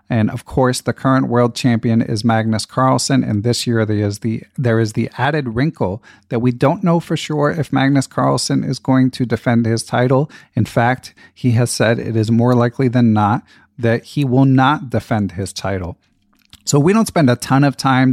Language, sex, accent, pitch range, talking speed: English, male, American, 115-130 Hz, 200 wpm